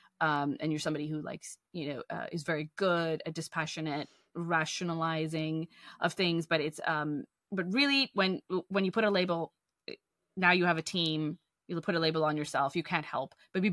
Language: English